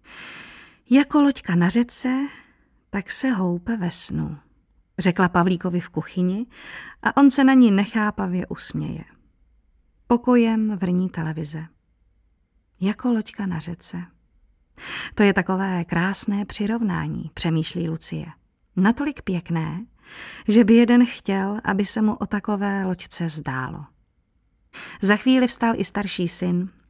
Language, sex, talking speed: Czech, female, 120 wpm